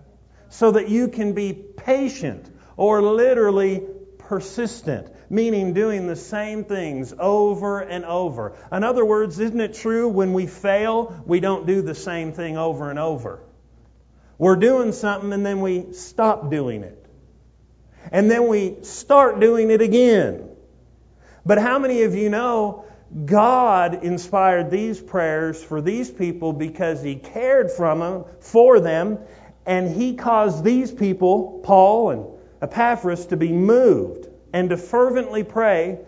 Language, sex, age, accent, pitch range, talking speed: English, male, 50-69, American, 175-225 Hz, 140 wpm